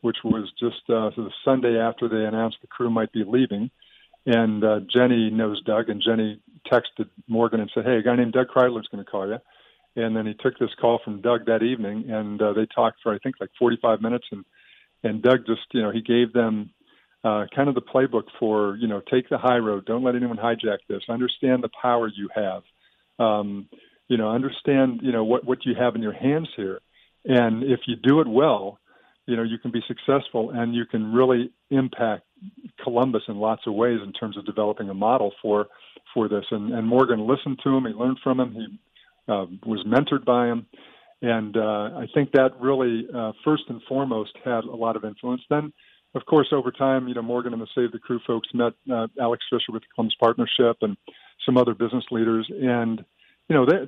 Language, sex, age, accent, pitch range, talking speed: English, male, 50-69, American, 110-125 Hz, 215 wpm